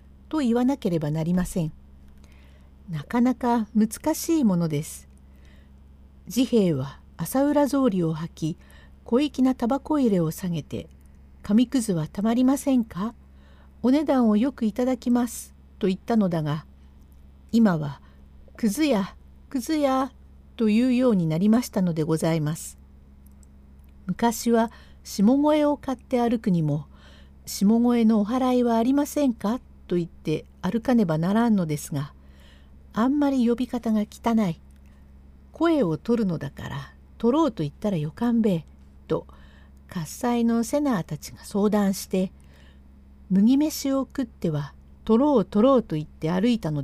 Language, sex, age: Japanese, female, 50-69